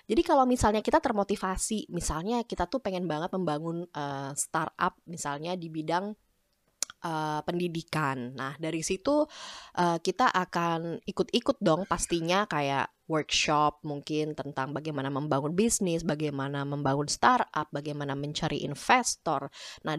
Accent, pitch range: native, 160-230 Hz